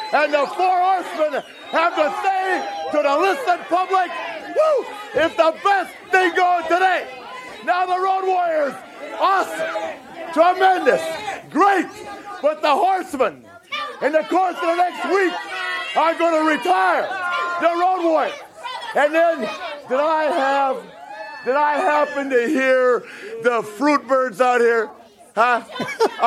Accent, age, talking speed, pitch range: American, 50-69, 130 wpm, 290-355 Hz